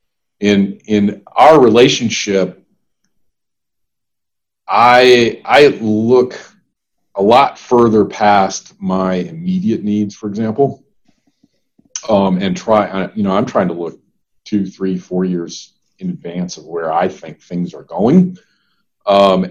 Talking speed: 120 wpm